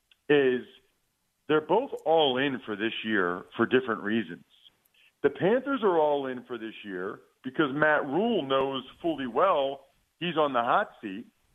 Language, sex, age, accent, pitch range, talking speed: English, male, 40-59, American, 120-155 Hz, 155 wpm